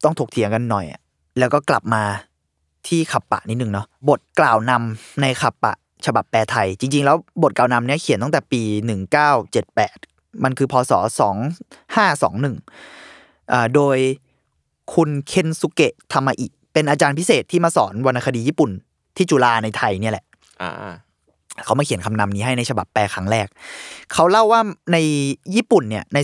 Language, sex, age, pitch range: Thai, male, 20-39, 105-145 Hz